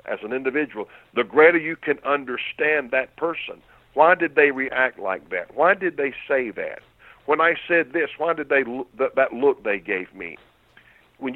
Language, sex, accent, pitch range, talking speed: English, male, American, 125-165 Hz, 190 wpm